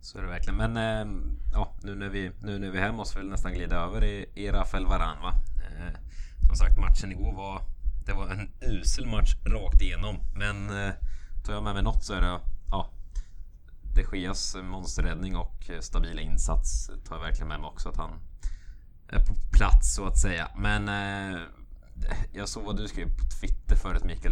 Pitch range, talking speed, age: 80-95 Hz, 190 wpm, 20-39